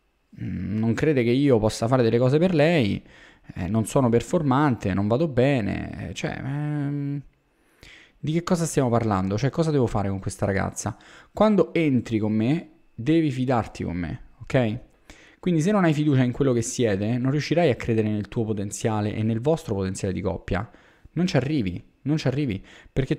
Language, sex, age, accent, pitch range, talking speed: Italian, male, 20-39, native, 110-150 Hz, 180 wpm